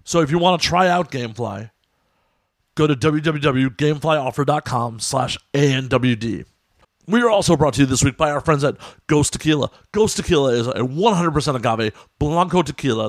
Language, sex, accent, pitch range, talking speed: English, male, American, 120-160 Hz, 160 wpm